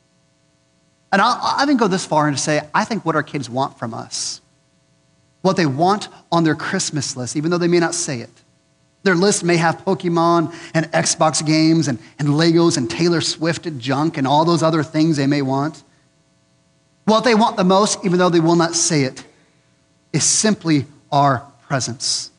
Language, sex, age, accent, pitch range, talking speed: English, male, 30-49, American, 145-210 Hz, 190 wpm